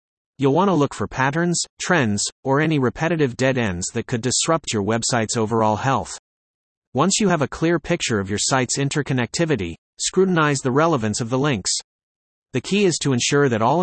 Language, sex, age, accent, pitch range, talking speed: English, male, 30-49, American, 120-155 Hz, 180 wpm